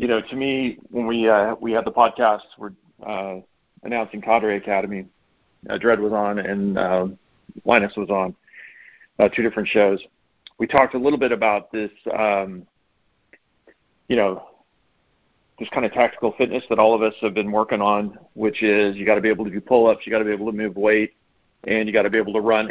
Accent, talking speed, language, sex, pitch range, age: American, 210 wpm, English, male, 105-120 Hz, 40-59